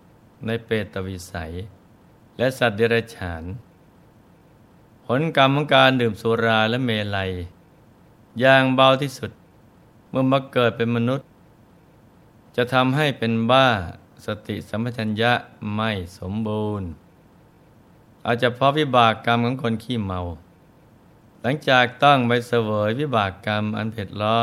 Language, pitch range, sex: Thai, 105-130 Hz, male